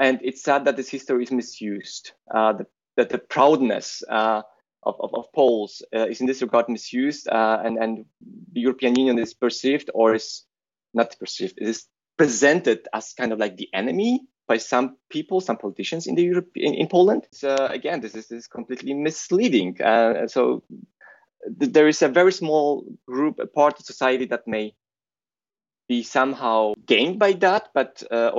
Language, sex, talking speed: English, male, 180 wpm